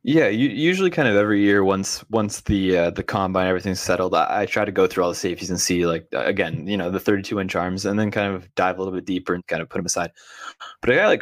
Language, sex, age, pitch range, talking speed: English, male, 20-39, 95-115 Hz, 285 wpm